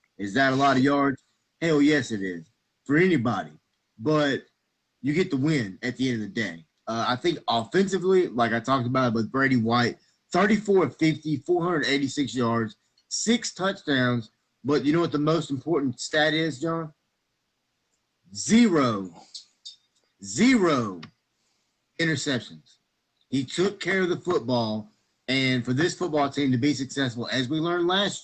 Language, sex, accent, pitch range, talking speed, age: English, male, American, 115-150 Hz, 145 wpm, 30-49